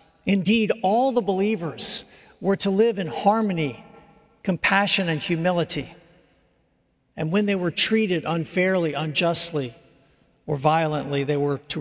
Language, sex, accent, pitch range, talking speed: English, male, American, 150-195 Hz, 120 wpm